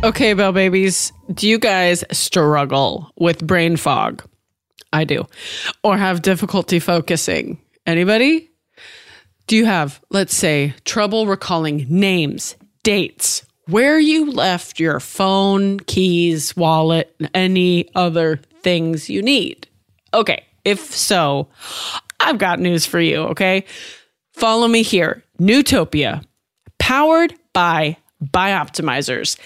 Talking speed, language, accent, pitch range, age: 110 wpm, English, American, 170-220 Hz, 30-49